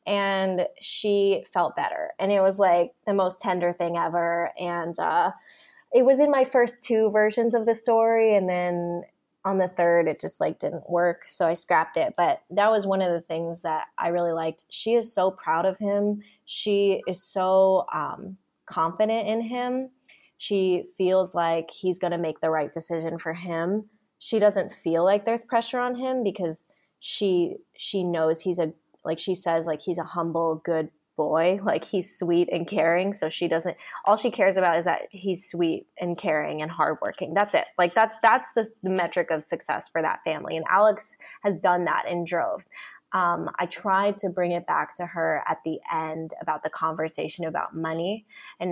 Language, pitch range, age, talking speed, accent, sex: English, 170-205 Hz, 20-39, 190 wpm, American, female